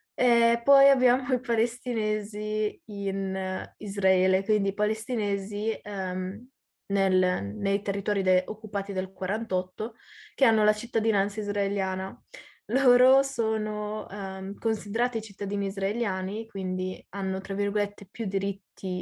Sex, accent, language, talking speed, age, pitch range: female, native, Italian, 95 wpm, 20-39, 190-225 Hz